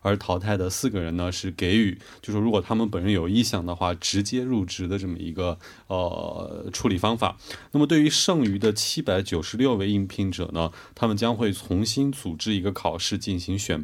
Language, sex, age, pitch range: Korean, male, 20-39, 95-120 Hz